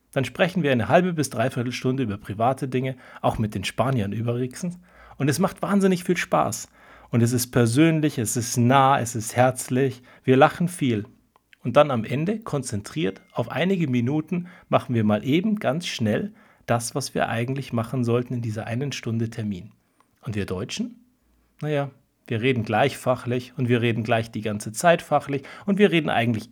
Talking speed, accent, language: 180 wpm, German, German